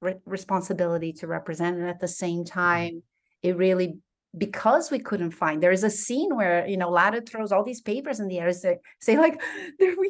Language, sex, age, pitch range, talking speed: English, female, 30-49, 180-235 Hz, 200 wpm